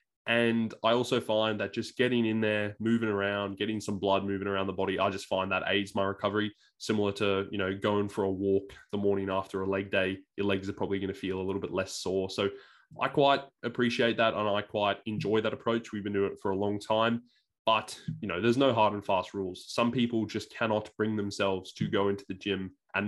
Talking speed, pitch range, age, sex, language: 235 wpm, 100-110 Hz, 20-39, male, English